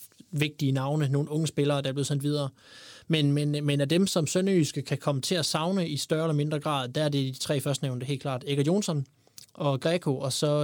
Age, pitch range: 20-39, 135-160 Hz